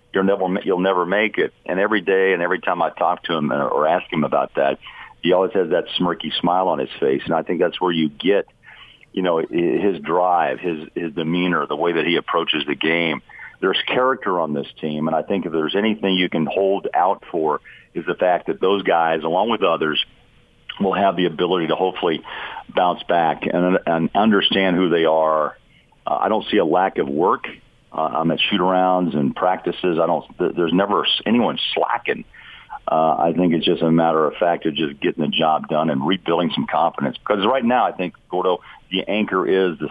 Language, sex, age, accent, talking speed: English, male, 50-69, American, 205 wpm